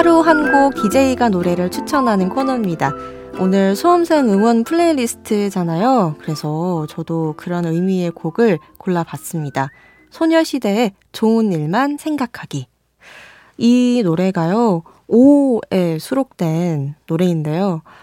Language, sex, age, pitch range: Korean, female, 20-39, 165-240 Hz